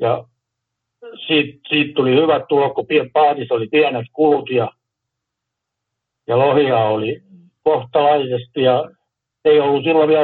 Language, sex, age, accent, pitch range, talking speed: Finnish, male, 60-79, native, 125-155 Hz, 125 wpm